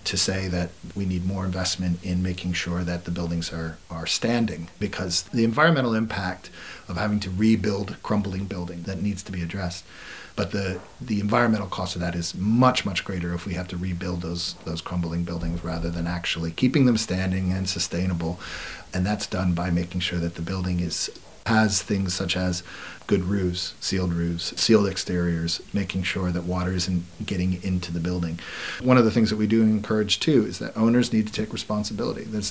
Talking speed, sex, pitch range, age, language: 195 wpm, male, 90-105 Hz, 40-59, English